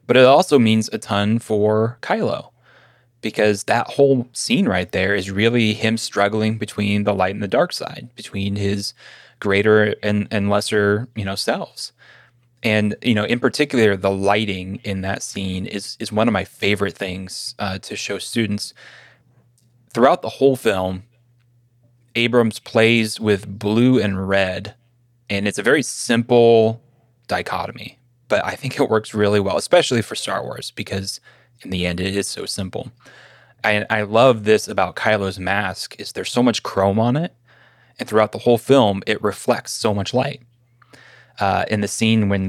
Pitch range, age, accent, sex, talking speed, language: 100-120 Hz, 20-39, American, male, 170 wpm, English